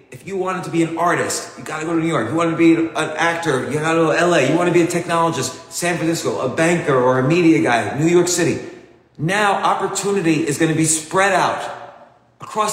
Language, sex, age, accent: English, male, 40-59, American